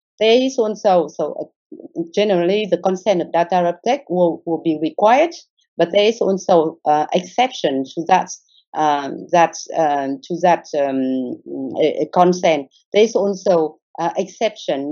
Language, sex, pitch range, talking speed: English, female, 165-200 Hz, 135 wpm